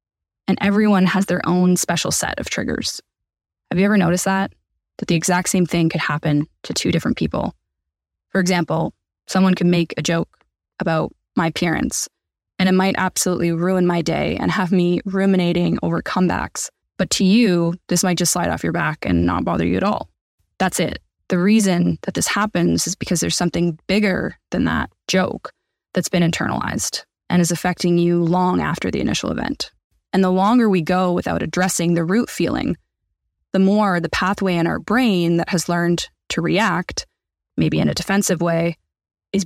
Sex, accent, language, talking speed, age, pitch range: female, American, English, 180 wpm, 20-39, 170-190 Hz